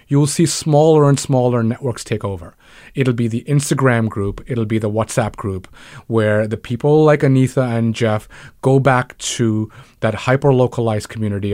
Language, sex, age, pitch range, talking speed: English, male, 30-49, 110-135 Hz, 165 wpm